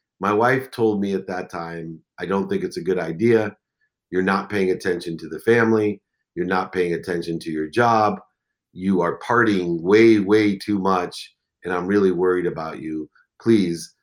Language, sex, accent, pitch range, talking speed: English, male, American, 90-130 Hz, 180 wpm